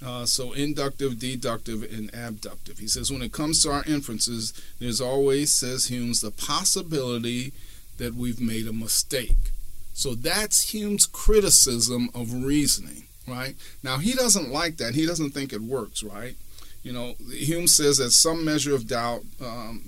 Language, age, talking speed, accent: English, 40-59, 160 wpm, American